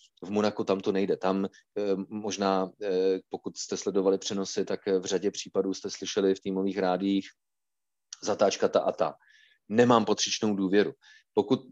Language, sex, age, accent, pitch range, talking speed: Czech, male, 30-49, native, 100-115 Hz, 155 wpm